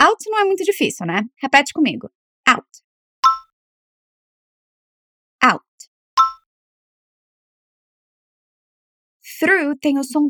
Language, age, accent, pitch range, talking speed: Portuguese, 20-39, Brazilian, 235-320 Hz, 80 wpm